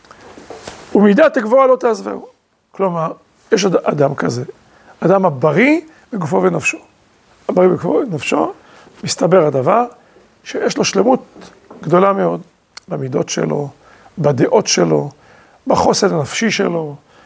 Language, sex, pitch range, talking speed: Hebrew, male, 170-235 Hz, 100 wpm